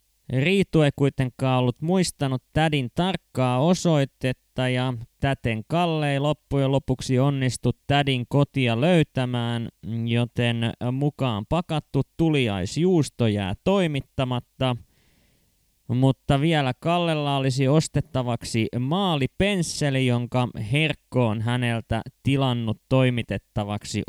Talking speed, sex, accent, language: 85 wpm, male, native, Finnish